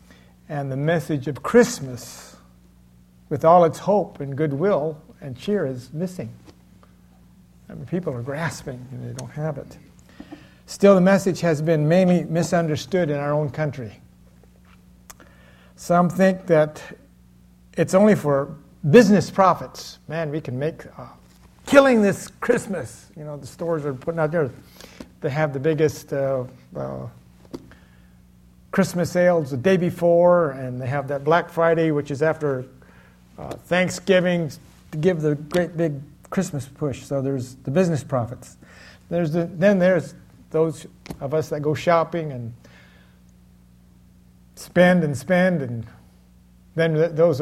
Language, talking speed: English, 140 wpm